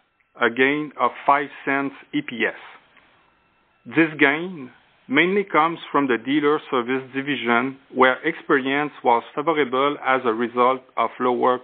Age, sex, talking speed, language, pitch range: 40-59, male, 125 wpm, English, 130-155 Hz